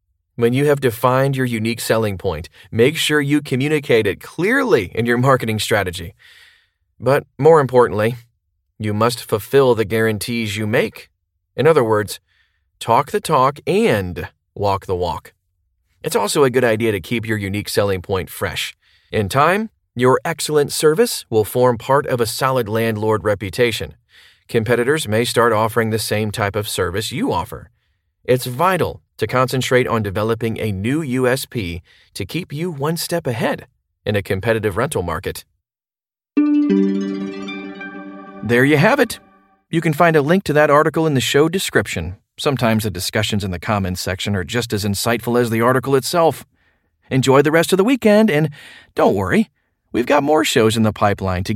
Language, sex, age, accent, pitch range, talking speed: English, male, 30-49, American, 100-140 Hz, 165 wpm